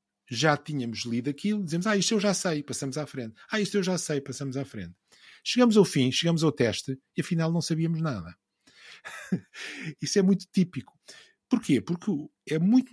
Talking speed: 185 wpm